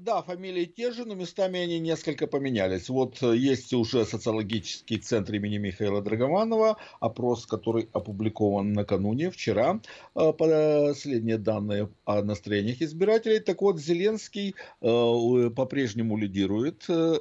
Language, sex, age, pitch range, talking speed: Russian, male, 50-69, 105-165 Hz, 110 wpm